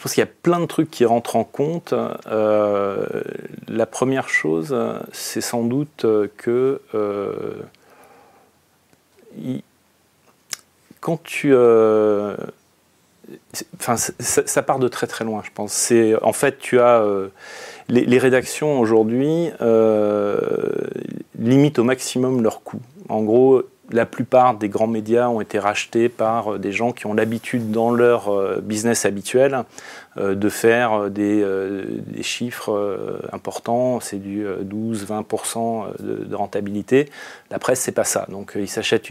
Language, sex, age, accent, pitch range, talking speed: French, male, 40-59, French, 105-120 Hz, 135 wpm